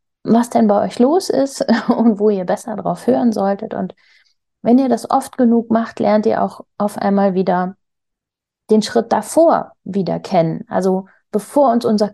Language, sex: German, female